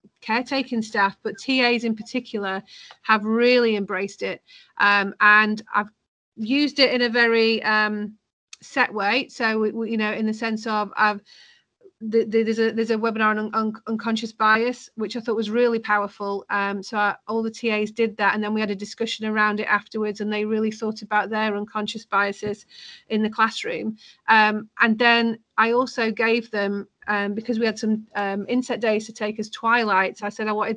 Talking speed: 195 wpm